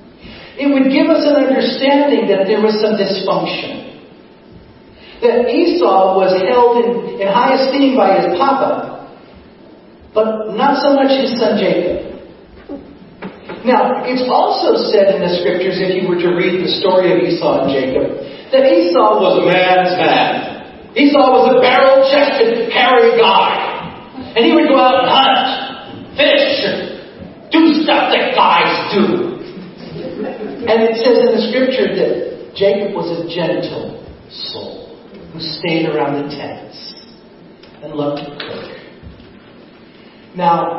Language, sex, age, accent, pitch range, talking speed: English, male, 40-59, American, 155-265 Hz, 140 wpm